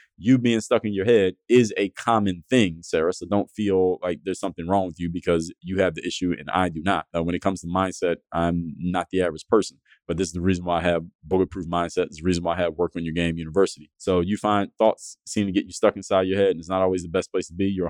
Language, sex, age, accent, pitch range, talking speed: English, male, 20-39, American, 90-105 Hz, 275 wpm